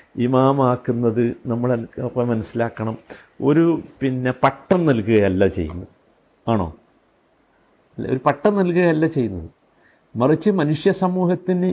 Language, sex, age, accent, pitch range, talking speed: Malayalam, male, 50-69, native, 130-175 Hz, 90 wpm